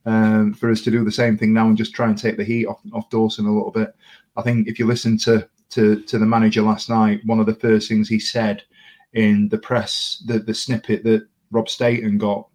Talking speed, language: 245 wpm, English